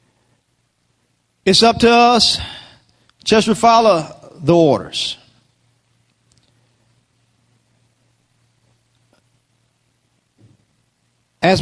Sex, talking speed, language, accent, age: male, 50 wpm, English, American, 40-59